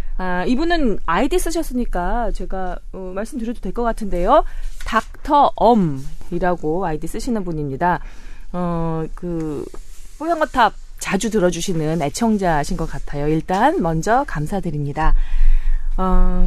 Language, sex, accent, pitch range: Korean, female, native, 165-235 Hz